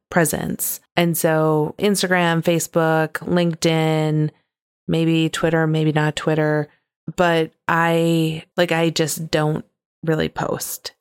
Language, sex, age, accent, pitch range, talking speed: English, female, 30-49, American, 155-175 Hz, 105 wpm